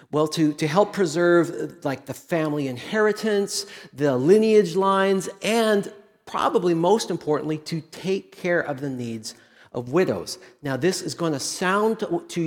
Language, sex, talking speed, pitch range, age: English, male, 150 wpm, 155-205 Hz, 40-59